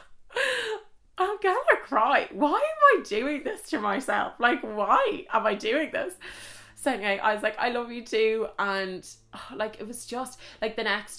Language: English